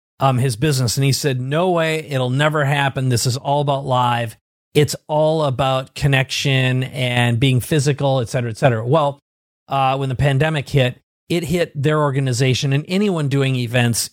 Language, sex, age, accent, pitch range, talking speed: English, male, 40-59, American, 130-155 Hz, 175 wpm